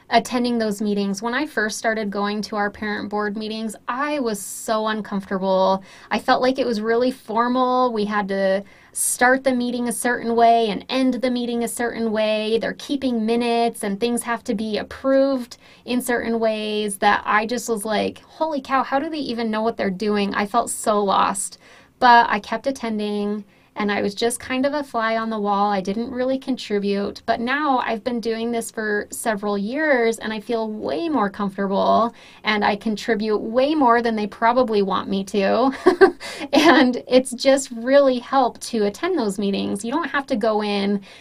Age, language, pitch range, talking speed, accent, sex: 20-39, English, 205-245 Hz, 190 wpm, American, female